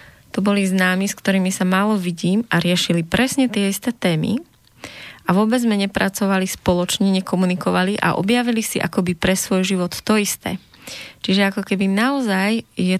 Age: 20-39